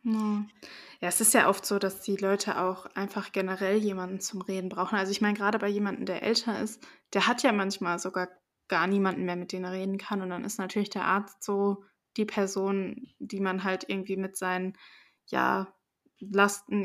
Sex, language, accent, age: female, German, German, 20-39